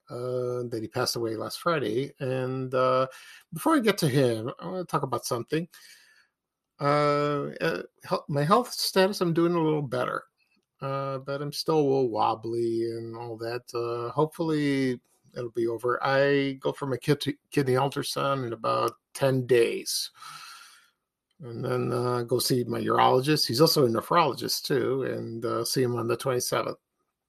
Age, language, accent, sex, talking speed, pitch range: 50-69, English, American, male, 165 wpm, 120-165 Hz